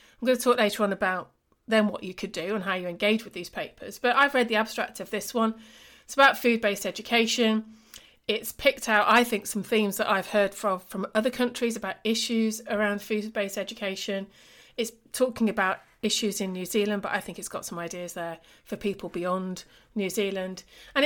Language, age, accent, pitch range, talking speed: English, 30-49, British, 200-245 Hz, 200 wpm